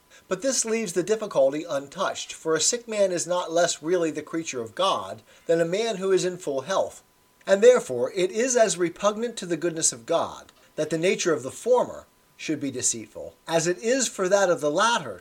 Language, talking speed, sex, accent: English, 215 wpm, male, American